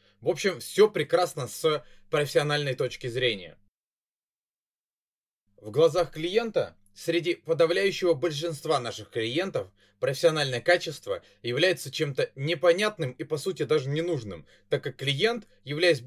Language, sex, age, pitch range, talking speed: Russian, male, 20-39, 125-180 Hz, 110 wpm